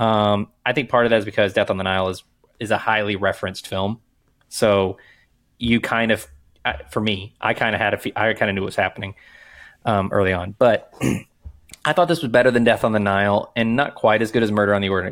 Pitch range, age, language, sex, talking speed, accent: 100-125 Hz, 20-39, English, male, 240 wpm, American